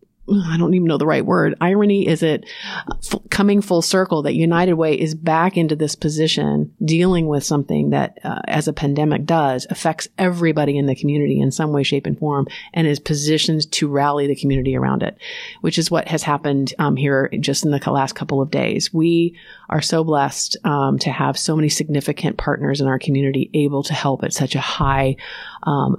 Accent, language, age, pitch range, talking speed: American, English, 40-59, 140-160 Hz, 200 wpm